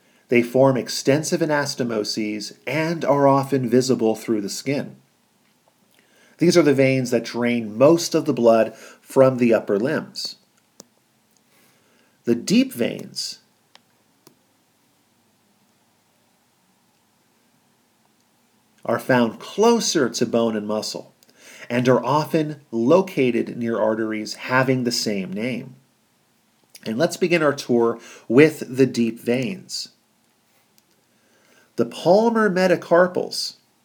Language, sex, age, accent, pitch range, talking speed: English, male, 40-59, American, 115-155 Hz, 100 wpm